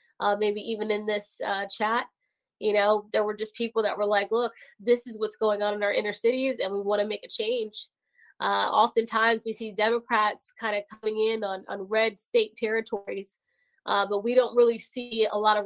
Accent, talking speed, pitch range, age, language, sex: American, 215 wpm, 210-235 Hz, 20-39, English, female